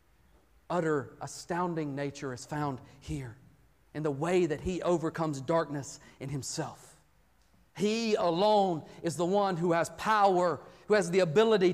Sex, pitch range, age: male, 195-260 Hz, 40-59